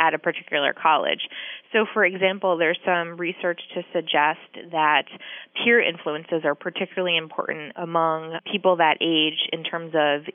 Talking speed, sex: 145 wpm, female